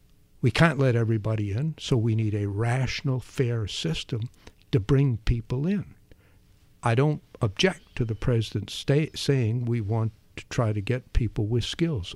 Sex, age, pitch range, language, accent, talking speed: male, 60-79, 110-135 Hz, English, American, 160 wpm